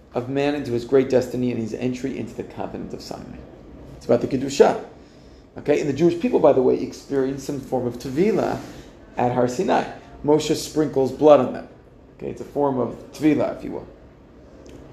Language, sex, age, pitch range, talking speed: English, male, 40-59, 120-150 Hz, 195 wpm